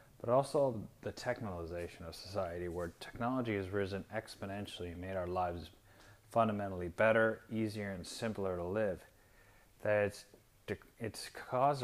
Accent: American